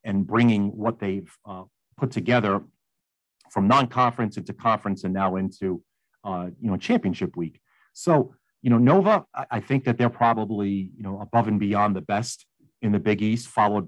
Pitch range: 100-125 Hz